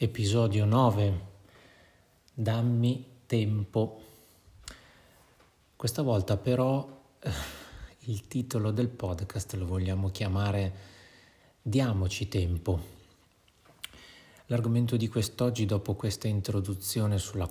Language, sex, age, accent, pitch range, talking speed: Italian, male, 30-49, native, 90-110 Hz, 80 wpm